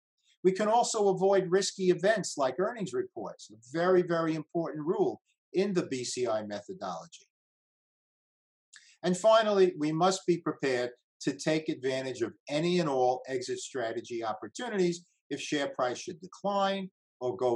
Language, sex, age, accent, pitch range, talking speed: English, male, 50-69, American, 130-185 Hz, 140 wpm